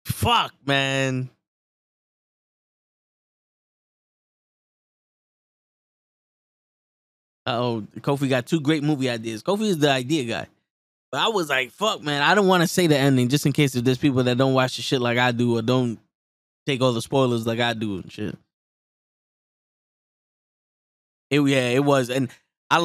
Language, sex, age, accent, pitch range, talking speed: English, male, 10-29, American, 125-160 Hz, 150 wpm